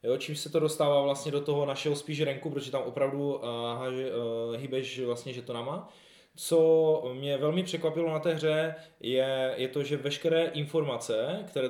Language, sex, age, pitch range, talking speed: Czech, male, 20-39, 115-145 Hz, 170 wpm